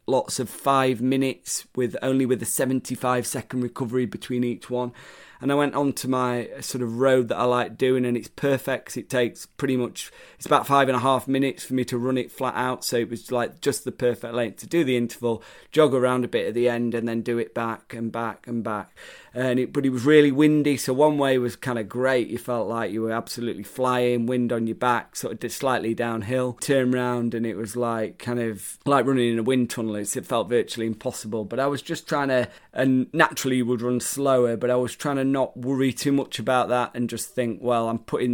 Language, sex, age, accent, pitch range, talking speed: English, male, 30-49, British, 120-135 Hz, 240 wpm